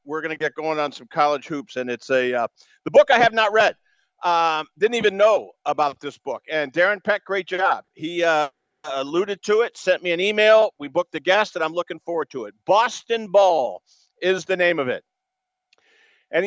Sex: male